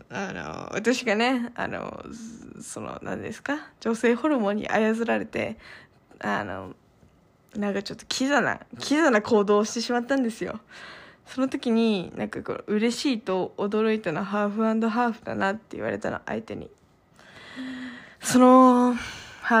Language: Japanese